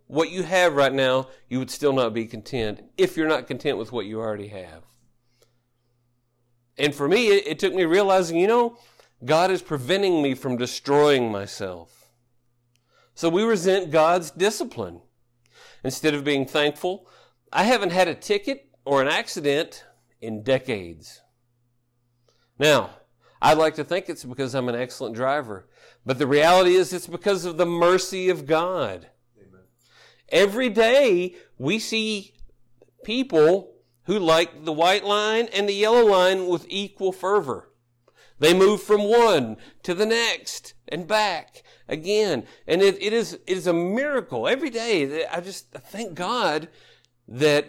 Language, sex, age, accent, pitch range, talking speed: English, male, 50-69, American, 120-190 Hz, 155 wpm